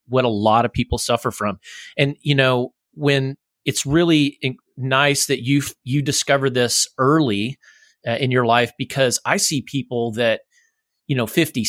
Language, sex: English, male